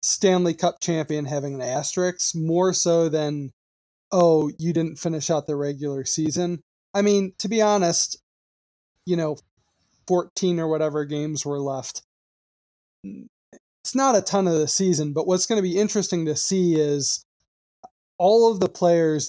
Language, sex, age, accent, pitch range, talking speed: English, male, 20-39, American, 150-185 Hz, 155 wpm